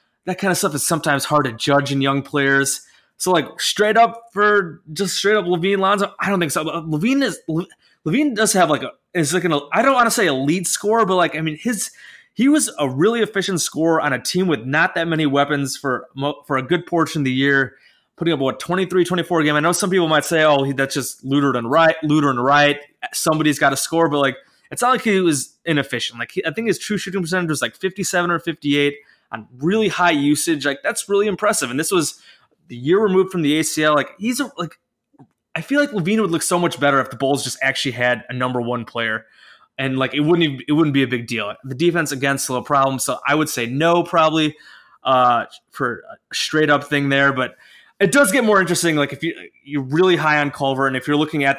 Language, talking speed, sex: English, 240 wpm, male